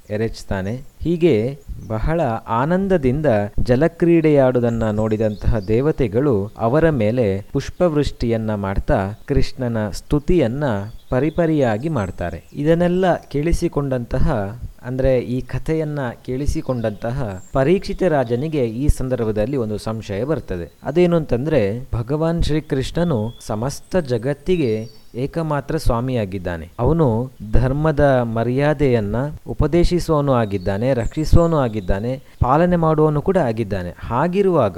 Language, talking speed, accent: Kannada, 85 wpm, native